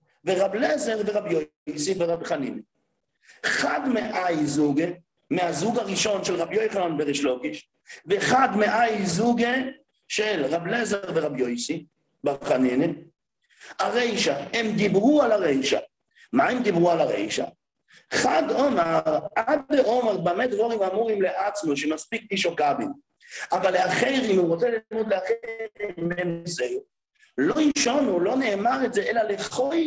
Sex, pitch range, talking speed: male, 175-260 Hz, 95 wpm